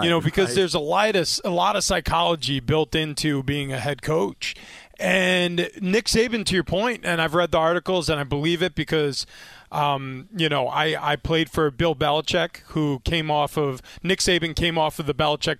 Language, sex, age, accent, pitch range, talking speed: English, male, 30-49, American, 150-185 Hz, 190 wpm